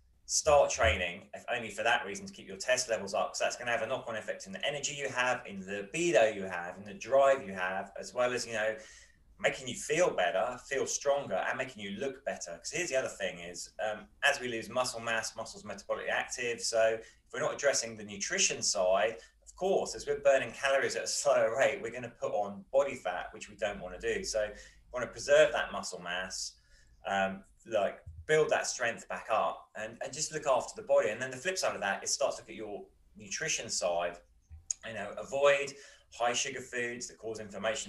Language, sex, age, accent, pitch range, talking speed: English, male, 20-39, British, 100-135 Hz, 225 wpm